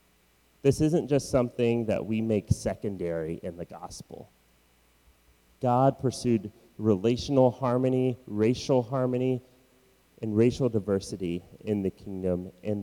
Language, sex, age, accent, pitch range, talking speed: English, male, 30-49, American, 95-120 Hz, 110 wpm